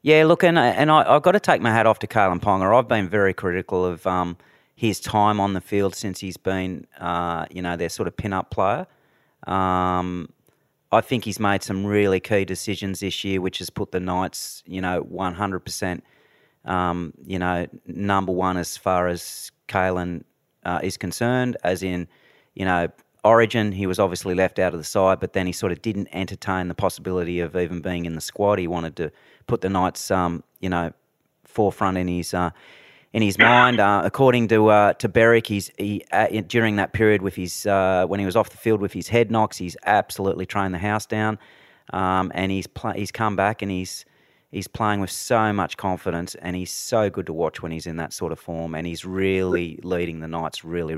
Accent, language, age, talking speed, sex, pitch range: Australian, English, 30-49, 210 wpm, male, 90-105 Hz